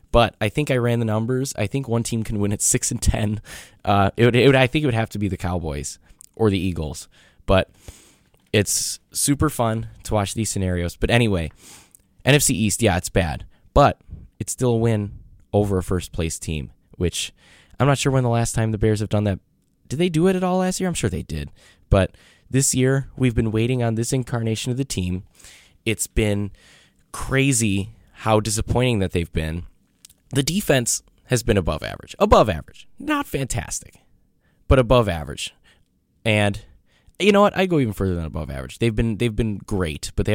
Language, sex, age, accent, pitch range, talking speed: English, male, 10-29, American, 90-125 Hz, 195 wpm